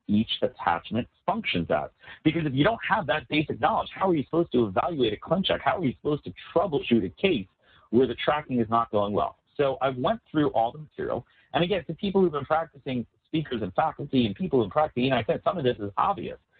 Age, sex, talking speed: 50-69, male, 235 wpm